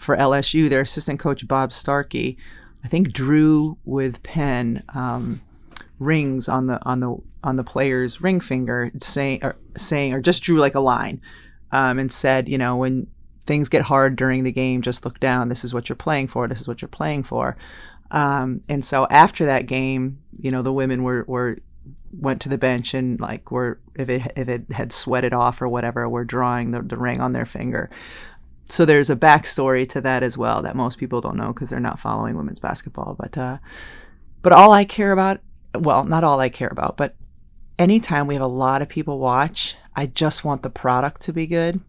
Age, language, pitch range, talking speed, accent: 30-49, English, 125-150 Hz, 210 wpm, American